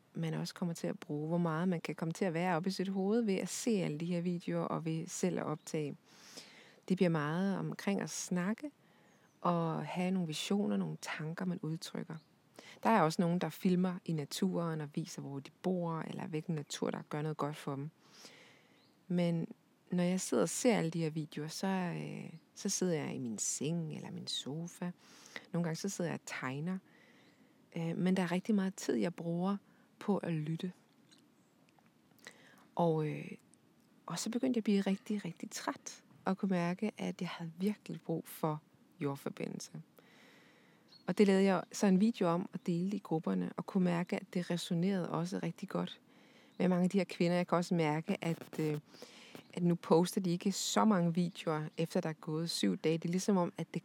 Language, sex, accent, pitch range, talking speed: Danish, female, native, 165-195 Hz, 200 wpm